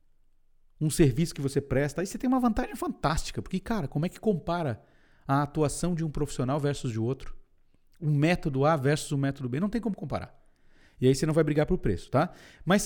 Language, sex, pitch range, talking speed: Portuguese, male, 145-190 Hz, 215 wpm